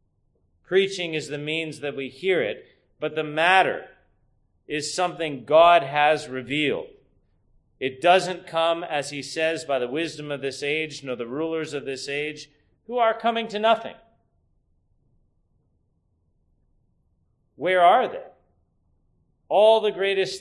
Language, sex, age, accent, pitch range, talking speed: English, male, 30-49, American, 115-175 Hz, 130 wpm